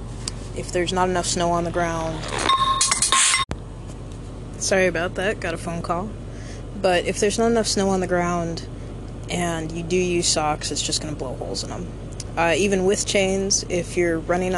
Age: 20-39